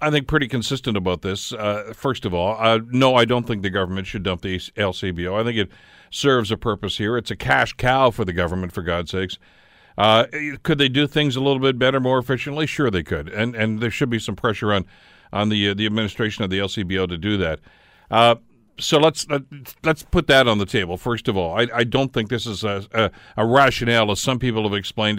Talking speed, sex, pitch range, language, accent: 235 wpm, male, 100-130 Hz, English, American